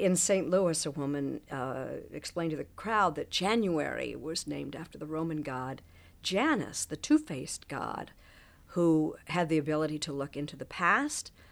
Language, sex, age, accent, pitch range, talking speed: English, female, 50-69, American, 150-200 Hz, 160 wpm